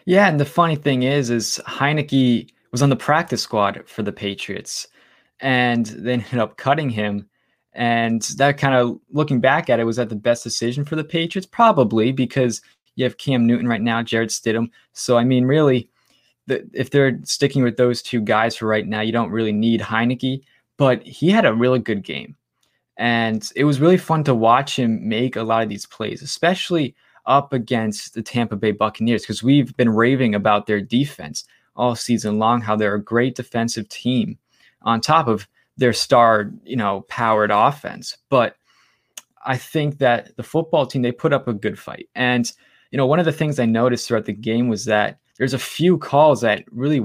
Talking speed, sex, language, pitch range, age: 195 wpm, male, English, 115-135 Hz, 20-39